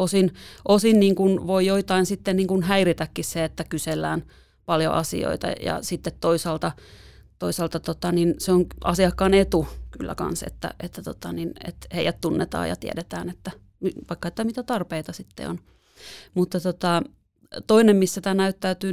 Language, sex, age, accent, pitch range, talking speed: Finnish, female, 30-49, native, 160-185 Hz, 155 wpm